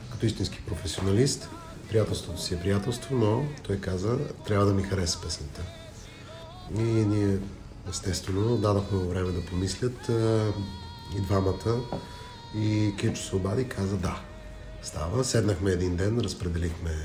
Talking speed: 115 wpm